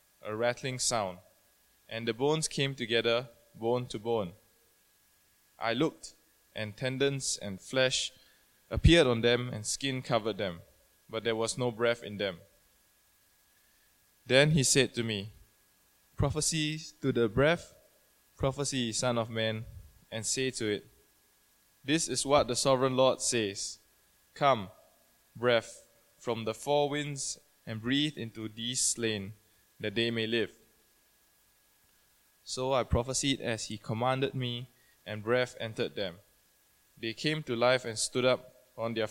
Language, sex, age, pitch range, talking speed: English, male, 20-39, 110-130 Hz, 140 wpm